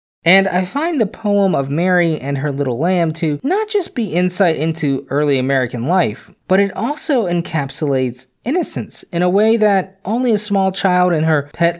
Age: 20-39